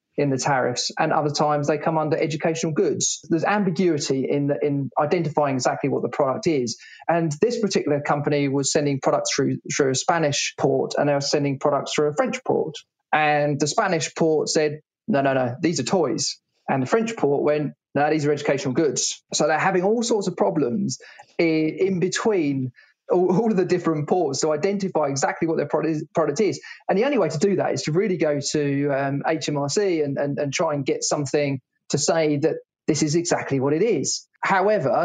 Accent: British